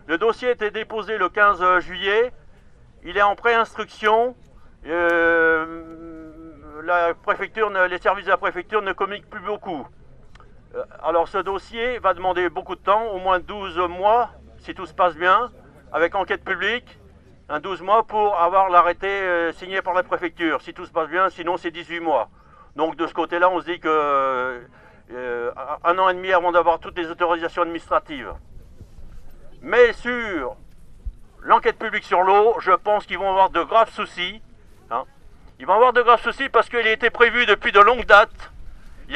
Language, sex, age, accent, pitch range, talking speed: French, male, 60-79, French, 175-215 Hz, 180 wpm